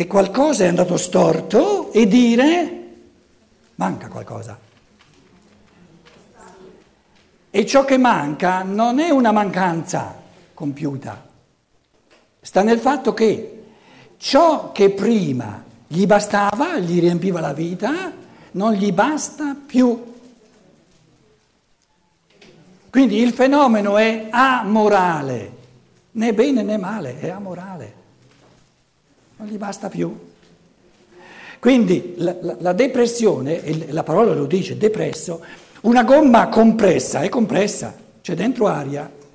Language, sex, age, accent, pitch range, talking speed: Italian, male, 60-79, native, 180-250 Hz, 105 wpm